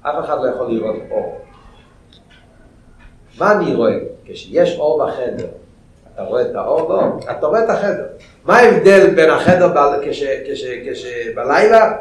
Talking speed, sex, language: 150 wpm, male, Hebrew